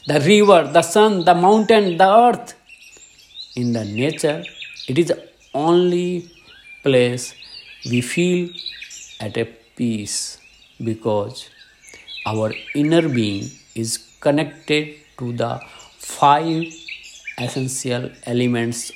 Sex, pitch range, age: male, 115-165 Hz, 50-69